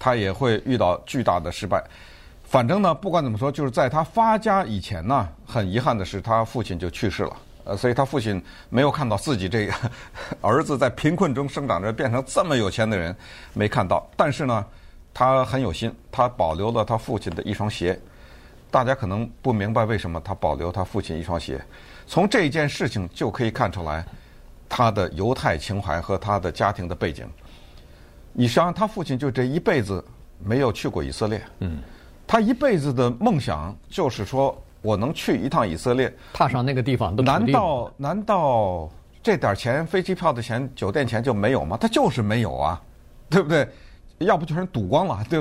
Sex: male